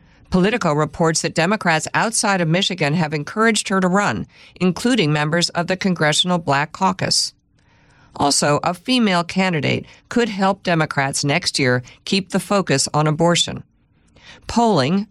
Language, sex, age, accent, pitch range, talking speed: English, female, 50-69, American, 145-195 Hz, 135 wpm